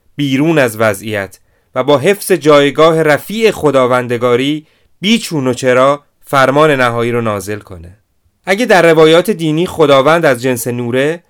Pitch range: 110-150 Hz